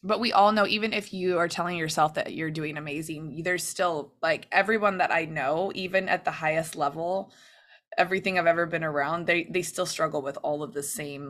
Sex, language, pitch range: female, English, 155-185 Hz